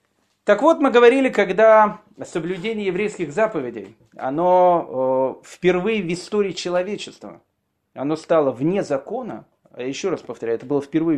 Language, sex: Russian, male